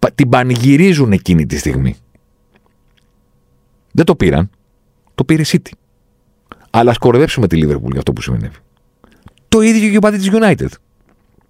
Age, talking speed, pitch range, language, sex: 50-69, 140 wpm, 70-105 Hz, Greek, male